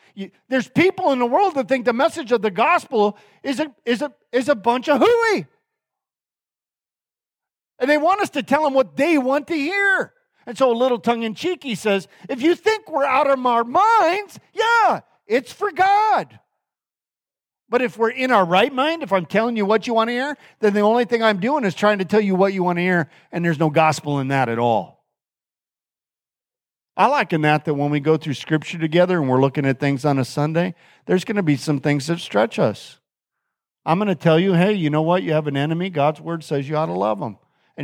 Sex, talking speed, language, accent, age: male, 220 wpm, English, American, 50-69